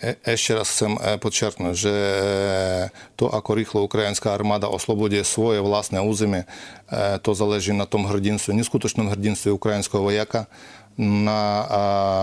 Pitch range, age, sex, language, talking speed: 100-110 Hz, 40-59, male, Slovak, 130 wpm